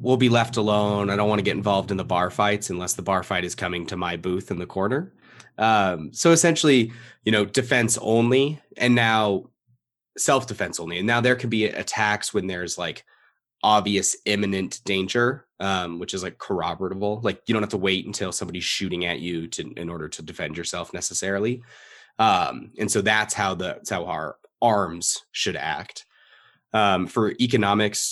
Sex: male